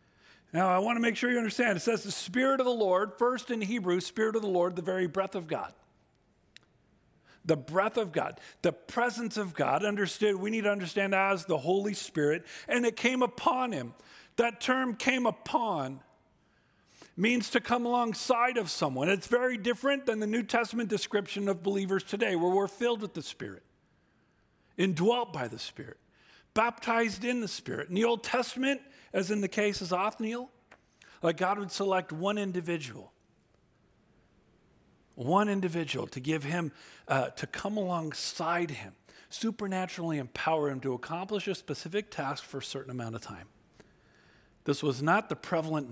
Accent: American